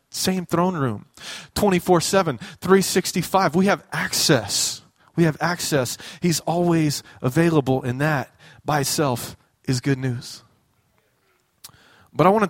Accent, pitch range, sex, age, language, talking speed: American, 155-235 Hz, male, 20-39, English, 120 wpm